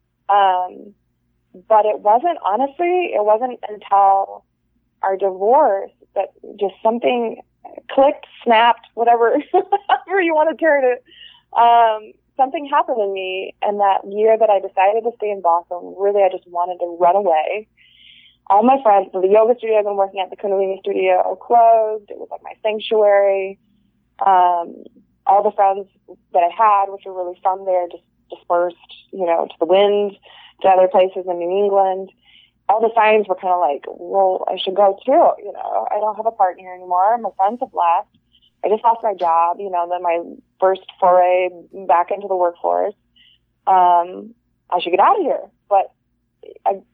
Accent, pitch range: American, 185-225 Hz